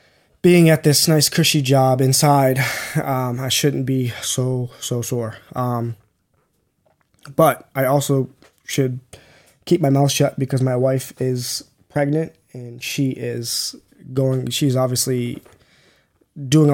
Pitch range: 125-145 Hz